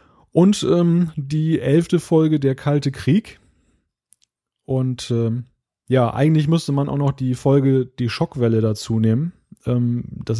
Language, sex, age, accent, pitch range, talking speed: German, male, 30-49, German, 120-145 Hz, 140 wpm